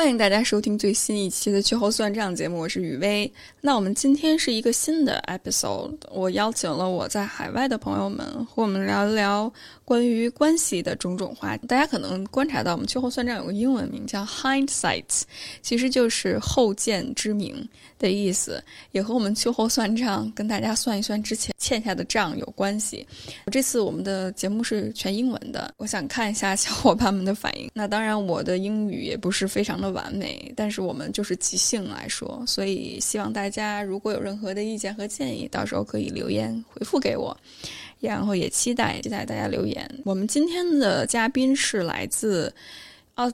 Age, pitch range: 10-29, 200-255 Hz